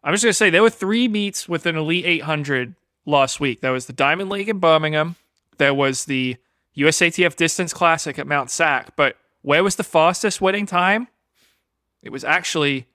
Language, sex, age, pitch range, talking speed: English, male, 20-39, 140-170 Hz, 190 wpm